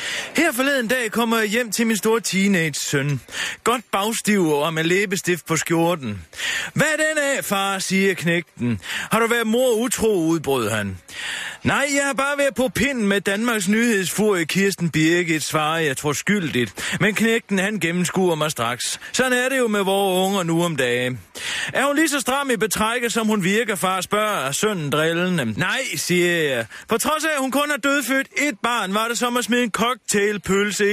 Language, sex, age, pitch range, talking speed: Danish, male, 30-49, 170-235 Hz, 190 wpm